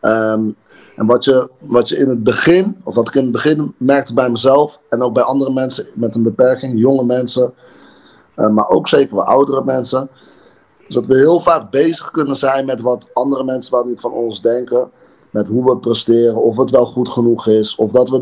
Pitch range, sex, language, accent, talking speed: 125-145 Hz, male, Dutch, Dutch, 205 wpm